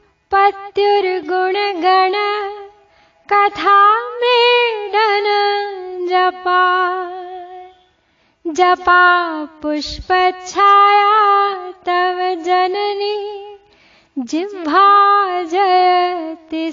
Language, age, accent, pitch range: Hindi, 20-39, native, 335-405 Hz